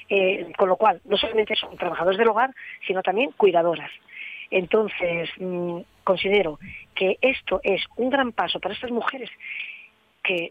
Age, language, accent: 40-59, Spanish, Spanish